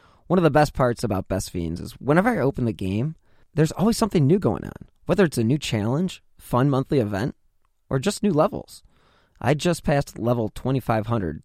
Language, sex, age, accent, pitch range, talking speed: English, male, 20-39, American, 100-145 Hz, 195 wpm